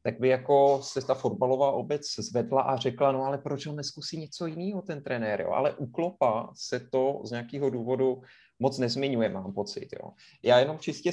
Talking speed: 195 wpm